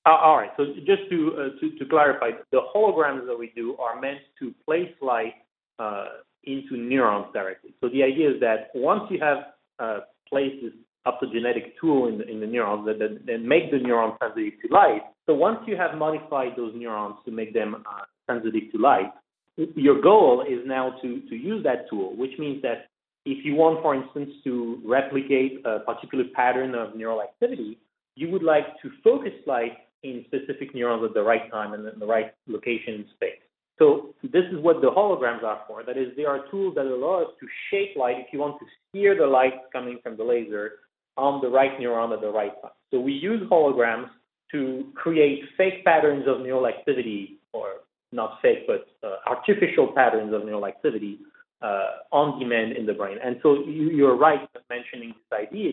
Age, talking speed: 30-49, 195 wpm